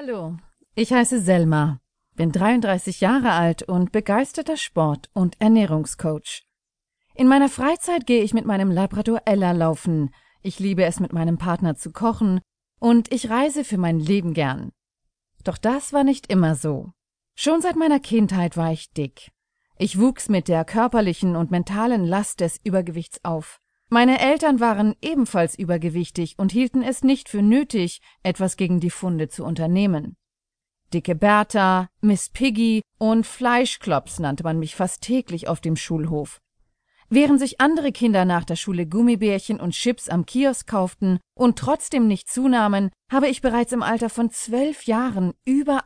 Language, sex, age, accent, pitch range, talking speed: German, female, 40-59, German, 170-240 Hz, 155 wpm